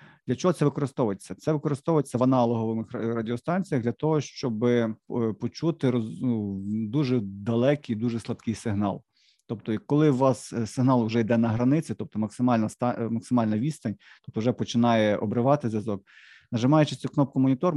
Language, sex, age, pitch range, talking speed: Ukrainian, male, 40-59, 110-135 Hz, 140 wpm